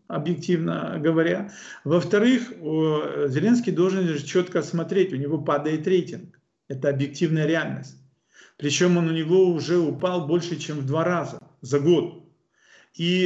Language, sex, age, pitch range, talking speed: Russian, male, 40-59, 145-185 Hz, 125 wpm